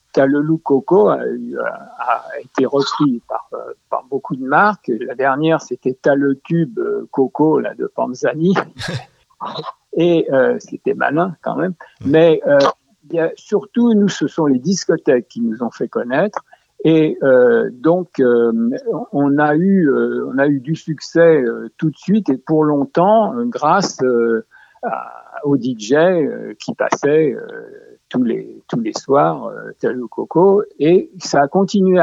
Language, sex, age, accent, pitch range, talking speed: French, male, 60-79, French, 130-195 Hz, 150 wpm